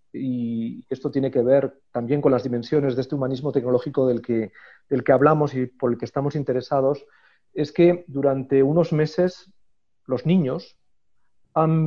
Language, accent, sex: English, Spanish, male